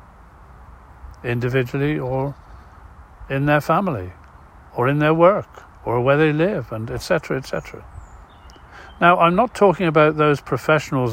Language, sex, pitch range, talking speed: English, male, 100-150 Hz, 125 wpm